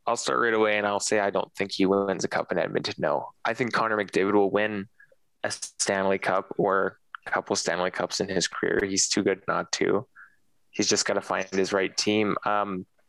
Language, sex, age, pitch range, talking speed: English, male, 20-39, 95-105 Hz, 220 wpm